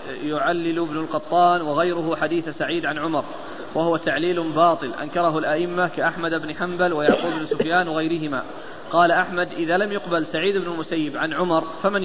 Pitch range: 165-185 Hz